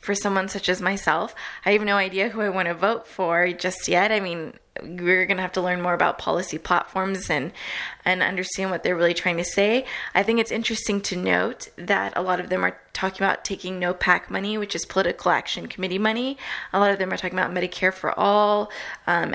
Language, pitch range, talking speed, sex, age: English, 180-200 Hz, 225 wpm, female, 20-39